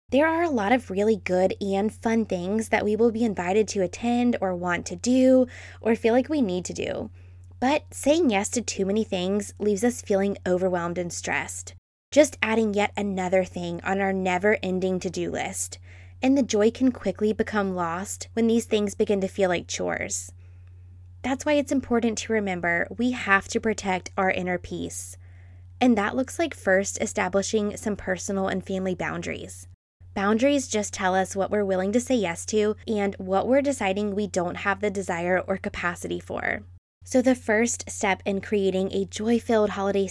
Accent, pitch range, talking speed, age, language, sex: American, 180-220 Hz, 185 wpm, 10-29, English, female